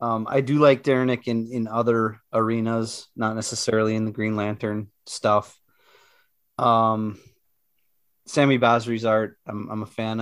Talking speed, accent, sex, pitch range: 140 wpm, American, male, 110-135 Hz